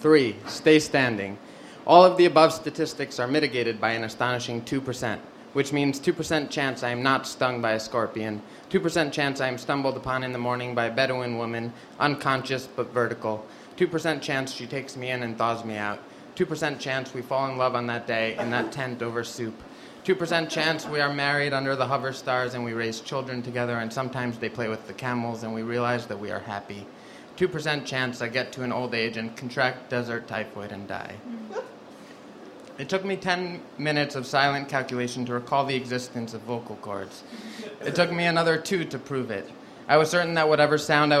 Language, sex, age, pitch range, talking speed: English, male, 30-49, 115-145 Hz, 200 wpm